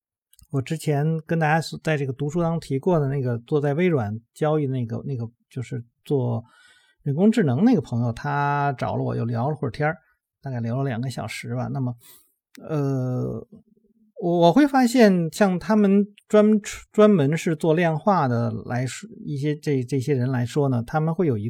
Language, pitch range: Chinese, 125-175 Hz